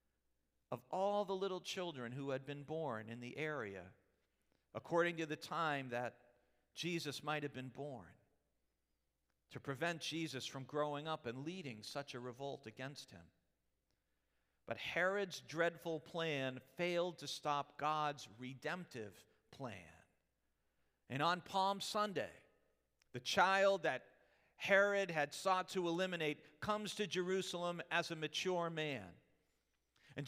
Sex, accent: male, American